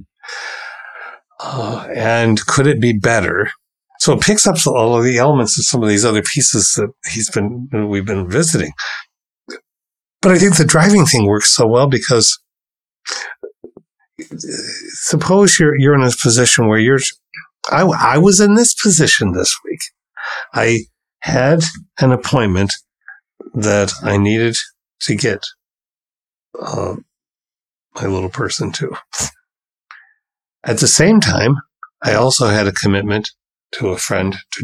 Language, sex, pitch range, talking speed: English, male, 105-155 Hz, 140 wpm